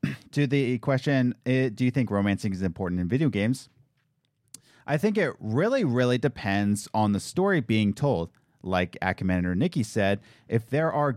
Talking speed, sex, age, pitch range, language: 160 wpm, male, 30-49, 100-145 Hz, English